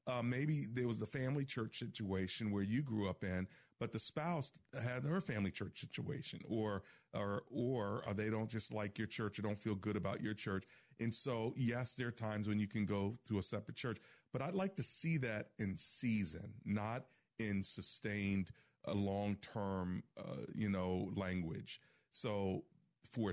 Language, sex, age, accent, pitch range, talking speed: English, male, 40-59, American, 105-125 Hz, 180 wpm